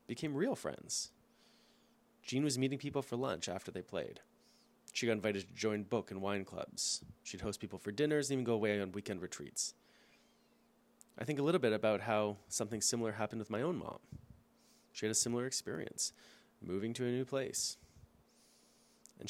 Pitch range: 105-165 Hz